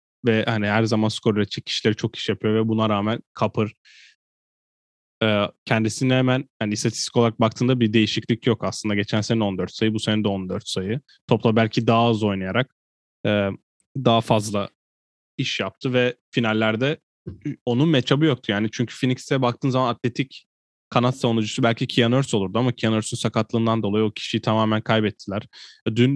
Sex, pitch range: male, 105-120 Hz